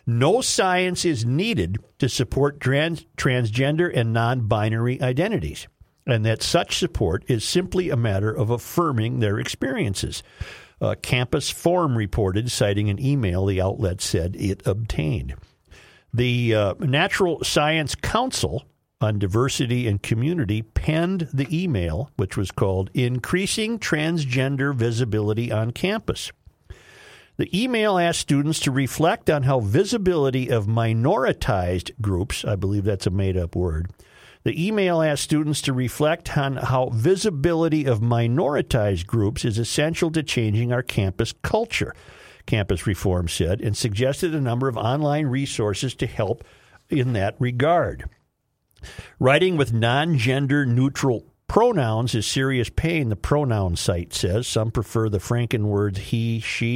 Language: English